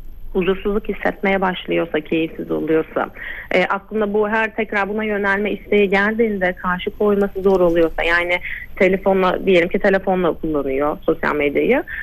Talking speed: 130 wpm